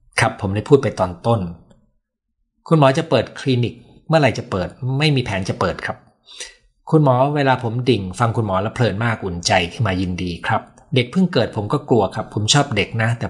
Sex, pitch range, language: male, 100-135 Hz, Thai